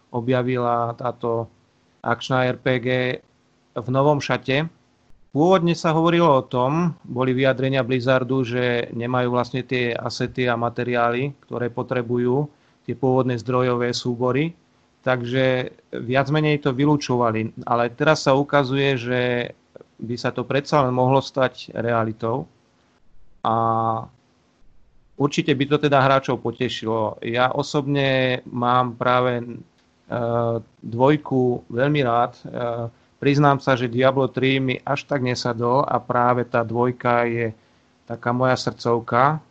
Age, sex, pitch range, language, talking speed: 30-49, male, 120-130 Hz, Slovak, 115 wpm